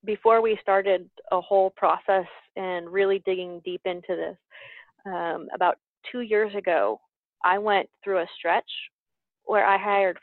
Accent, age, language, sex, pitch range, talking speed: American, 30-49, English, female, 185-215 Hz, 145 wpm